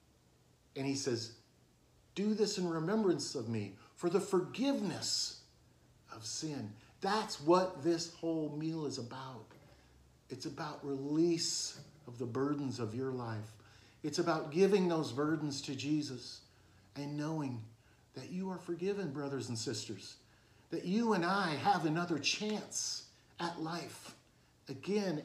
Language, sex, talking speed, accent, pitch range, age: English, male, 135 wpm, American, 120-175 Hz, 50-69